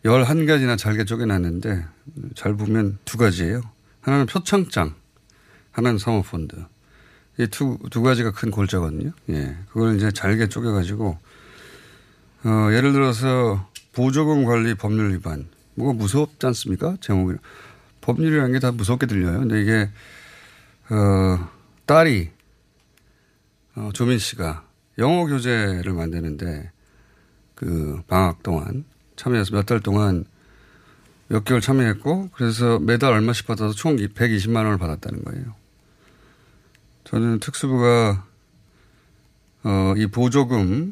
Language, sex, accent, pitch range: Korean, male, native, 95-125 Hz